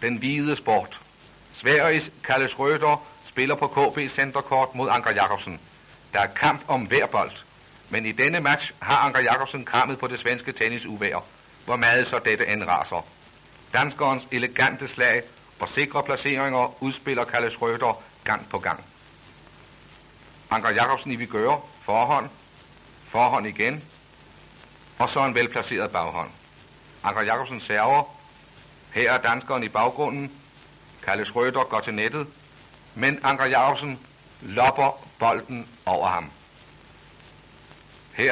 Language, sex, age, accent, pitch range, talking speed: Danish, male, 60-79, native, 120-140 Hz, 125 wpm